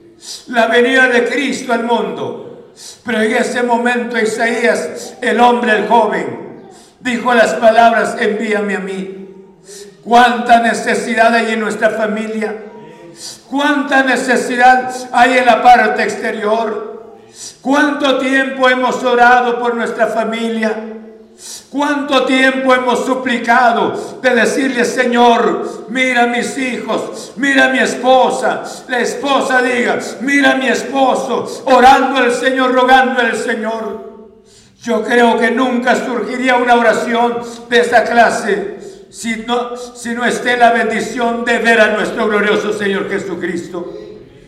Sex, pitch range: male, 220-250 Hz